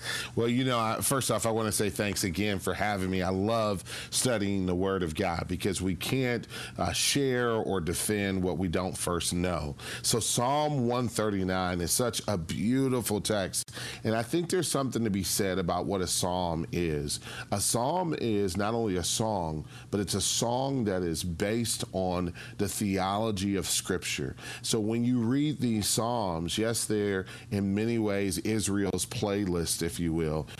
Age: 40-59